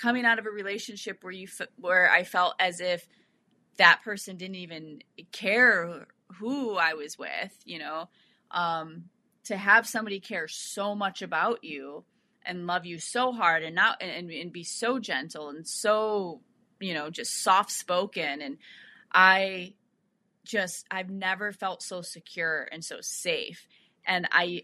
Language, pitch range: English, 170-210 Hz